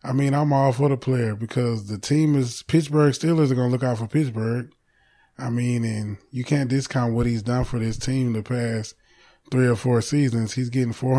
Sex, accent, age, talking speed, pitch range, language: male, American, 20-39, 215 wpm, 120-135 Hz, English